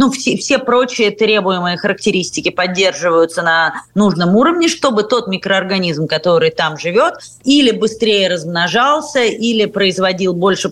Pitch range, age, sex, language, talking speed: 175-220 Hz, 30-49, female, Russian, 125 wpm